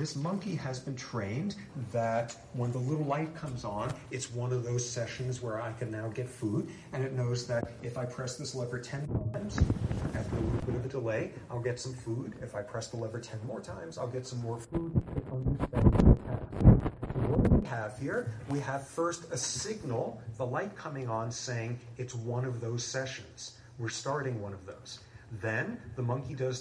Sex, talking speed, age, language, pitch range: male, 195 wpm, 40-59, English, 115-130 Hz